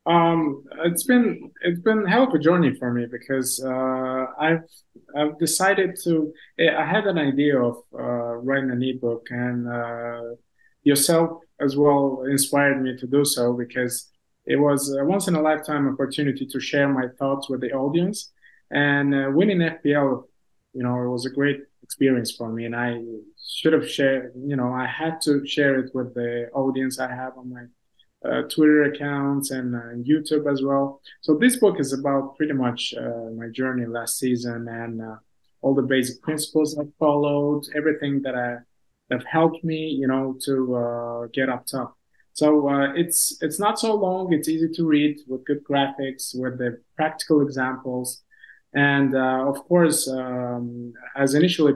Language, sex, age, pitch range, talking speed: English, male, 20-39, 125-150 Hz, 175 wpm